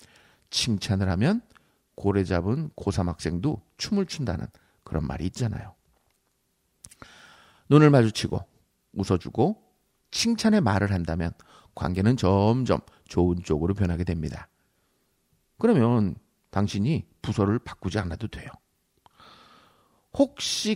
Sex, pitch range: male, 90-125 Hz